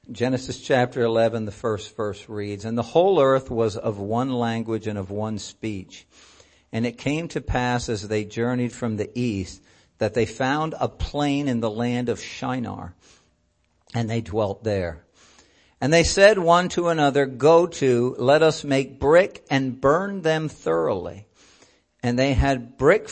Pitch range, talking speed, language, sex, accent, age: 115-145 Hz, 165 wpm, English, male, American, 50-69